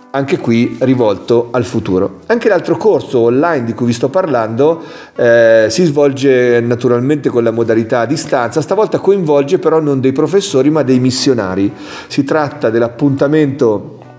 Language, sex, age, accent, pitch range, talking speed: Italian, male, 40-59, native, 120-155 Hz, 150 wpm